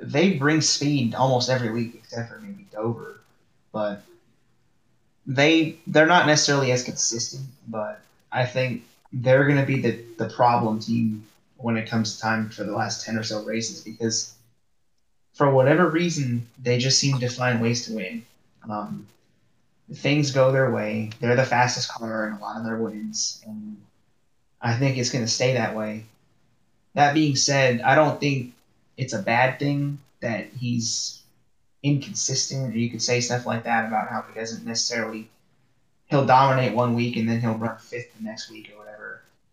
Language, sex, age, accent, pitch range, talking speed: English, male, 20-39, American, 115-135 Hz, 175 wpm